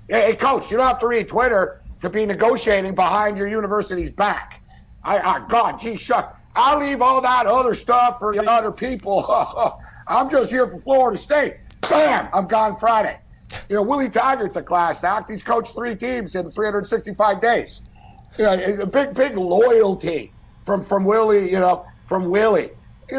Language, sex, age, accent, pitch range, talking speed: English, male, 60-79, American, 180-230 Hz, 175 wpm